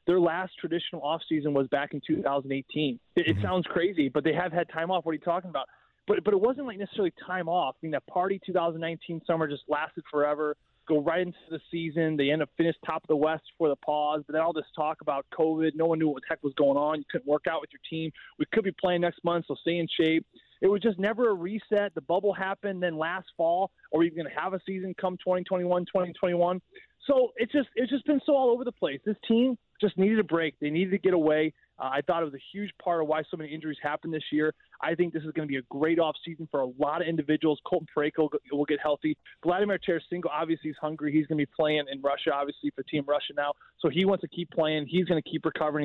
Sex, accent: male, American